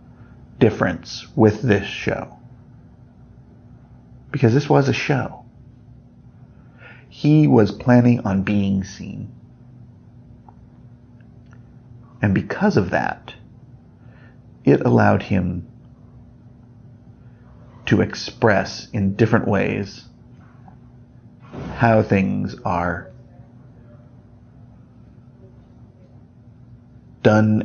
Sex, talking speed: male, 65 wpm